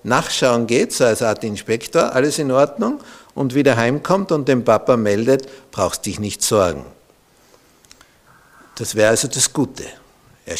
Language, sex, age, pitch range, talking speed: German, male, 60-79, 105-135 Hz, 145 wpm